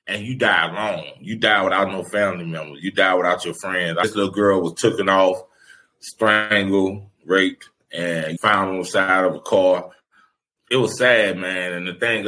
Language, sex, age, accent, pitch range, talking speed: English, male, 30-49, American, 95-120 Hz, 185 wpm